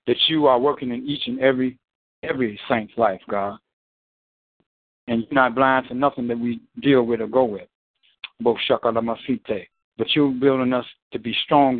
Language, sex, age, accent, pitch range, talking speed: English, male, 60-79, American, 125-160 Hz, 165 wpm